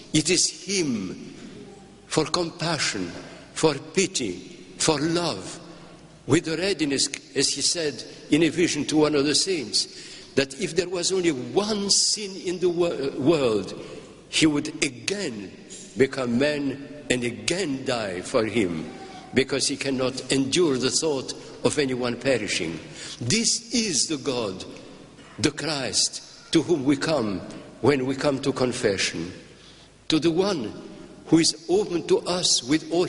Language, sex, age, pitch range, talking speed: English, male, 60-79, 140-180 Hz, 140 wpm